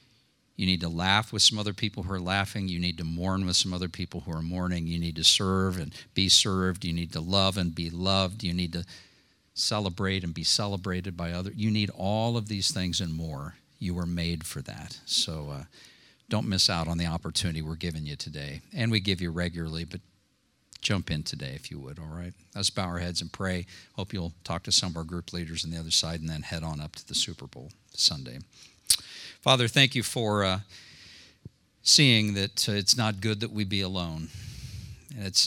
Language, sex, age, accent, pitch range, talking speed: English, male, 50-69, American, 85-105 Hz, 220 wpm